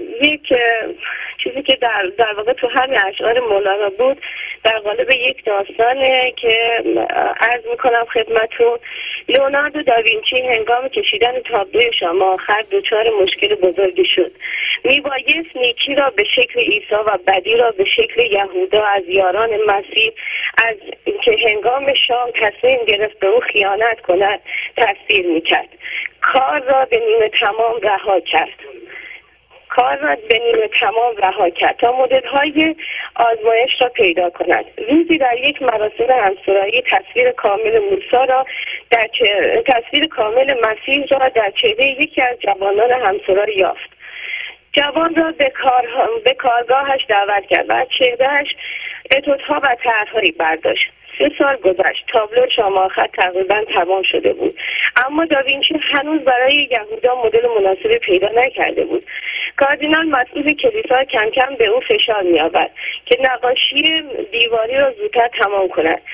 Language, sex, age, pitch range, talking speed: Persian, female, 30-49, 220-330 Hz, 135 wpm